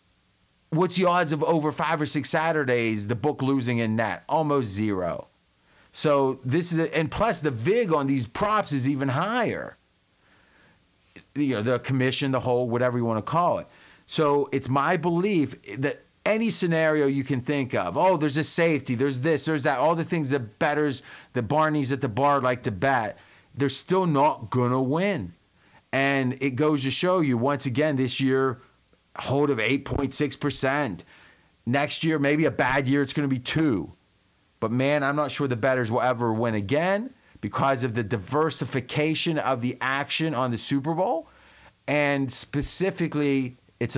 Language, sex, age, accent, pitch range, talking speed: English, male, 40-59, American, 125-155 Hz, 175 wpm